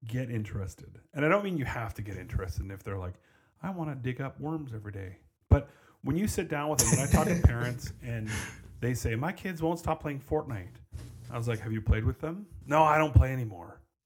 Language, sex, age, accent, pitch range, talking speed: English, male, 30-49, American, 105-130 Hz, 240 wpm